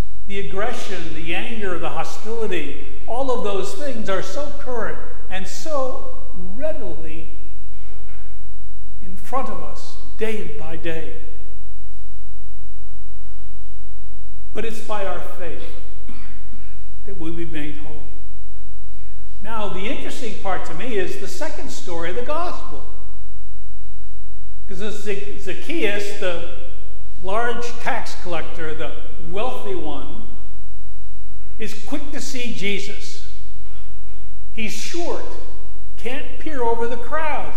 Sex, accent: male, American